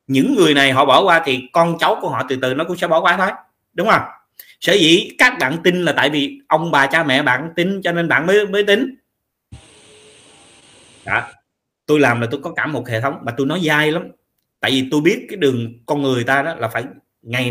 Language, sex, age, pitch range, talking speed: Vietnamese, male, 20-39, 135-180 Hz, 235 wpm